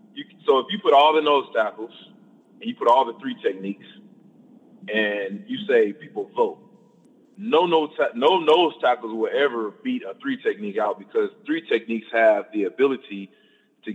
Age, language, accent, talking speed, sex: 30-49, English, American, 165 wpm, male